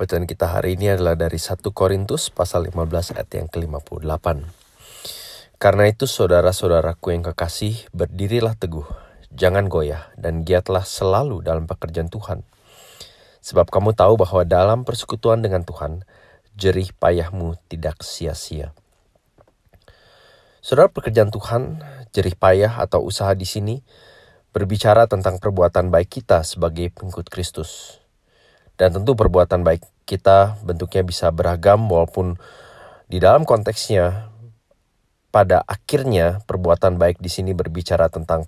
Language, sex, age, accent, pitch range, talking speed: Indonesian, male, 30-49, native, 85-100 Hz, 120 wpm